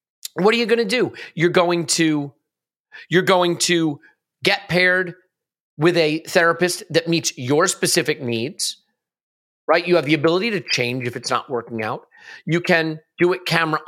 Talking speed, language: 170 wpm, English